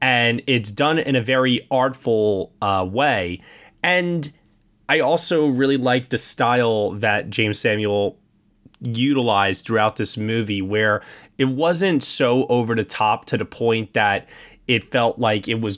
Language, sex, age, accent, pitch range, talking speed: English, male, 20-39, American, 110-145 Hz, 150 wpm